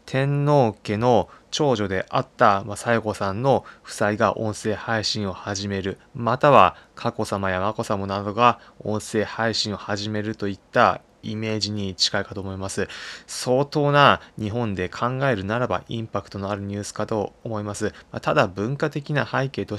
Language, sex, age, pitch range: Japanese, male, 20-39, 100-125 Hz